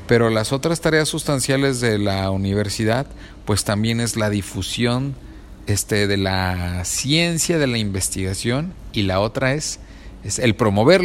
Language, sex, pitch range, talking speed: Spanish, male, 100-140 Hz, 145 wpm